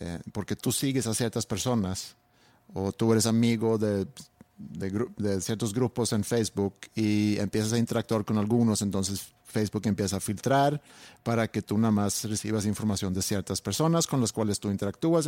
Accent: Mexican